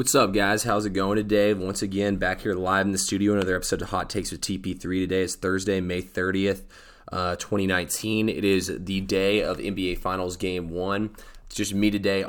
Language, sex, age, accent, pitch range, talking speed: English, male, 20-39, American, 90-100 Hz, 205 wpm